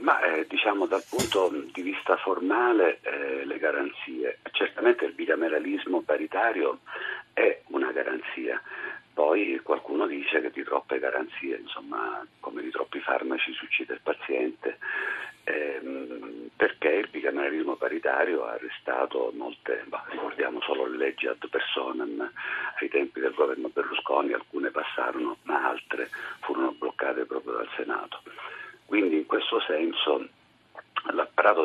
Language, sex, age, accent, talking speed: Italian, male, 50-69, native, 120 wpm